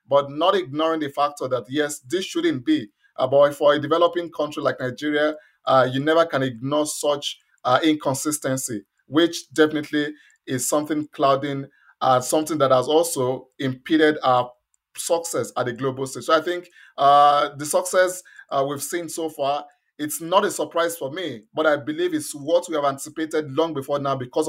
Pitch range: 140-175 Hz